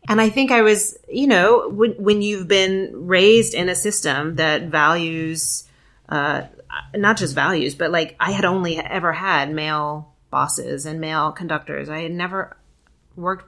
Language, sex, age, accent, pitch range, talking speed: English, female, 30-49, American, 150-195 Hz, 165 wpm